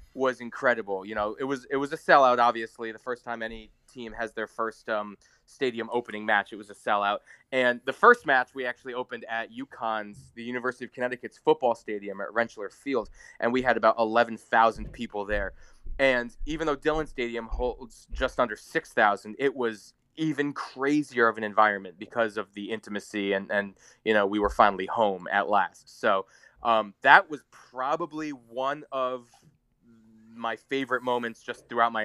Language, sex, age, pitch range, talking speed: English, male, 20-39, 105-125 Hz, 180 wpm